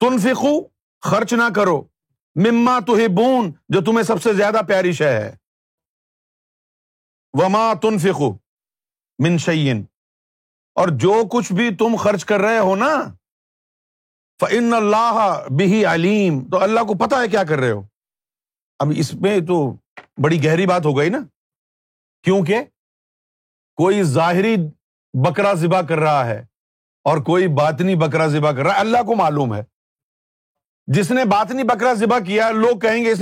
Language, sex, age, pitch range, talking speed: Urdu, male, 50-69, 150-220 Hz, 150 wpm